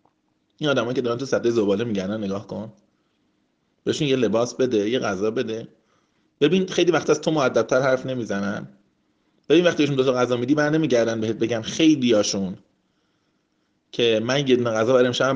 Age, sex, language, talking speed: 30-49, male, Persian, 160 wpm